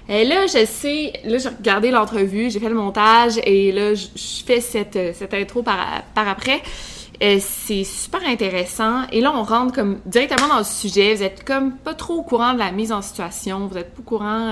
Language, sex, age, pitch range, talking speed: French, female, 20-39, 190-230 Hz, 215 wpm